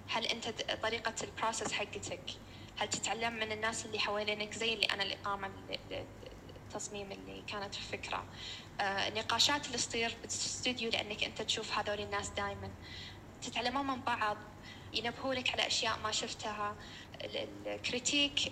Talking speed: 120 wpm